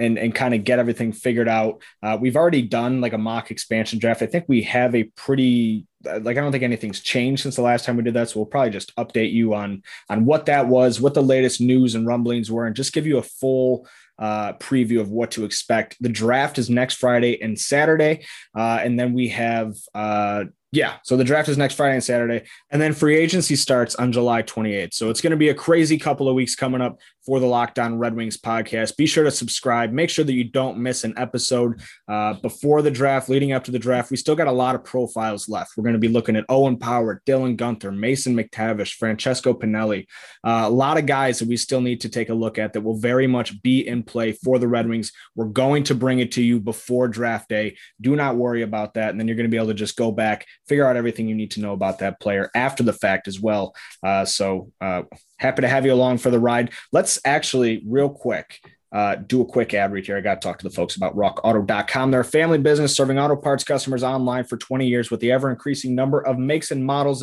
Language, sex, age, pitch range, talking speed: English, male, 20-39, 115-130 Hz, 245 wpm